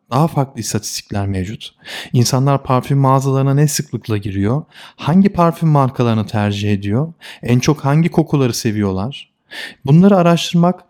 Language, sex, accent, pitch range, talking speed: Turkish, male, native, 115-150 Hz, 120 wpm